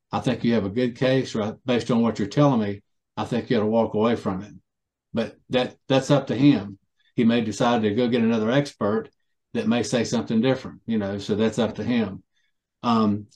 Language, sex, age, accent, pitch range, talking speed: English, male, 50-69, American, 110-135 Hz, 220 wpm